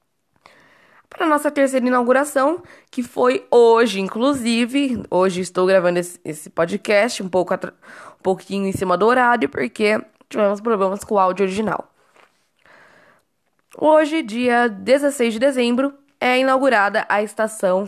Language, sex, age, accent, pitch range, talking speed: Portuguese, female, 10-29, Brazilian, 190-250 Hz, 125 wpm